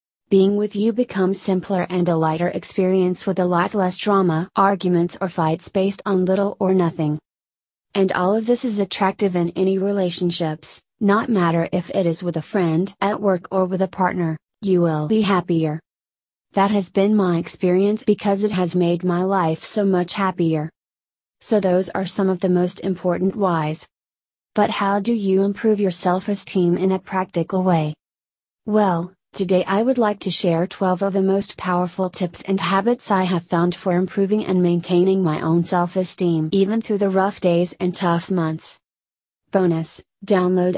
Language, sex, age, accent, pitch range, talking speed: English, female, 30-49, American, 175-195 Hz, 175 wpm